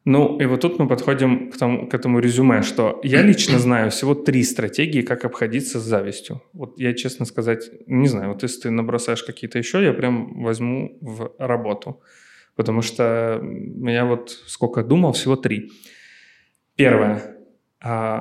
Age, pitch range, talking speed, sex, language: 20-39, 115-135 Hz, 160 wpm, male, Ukrainian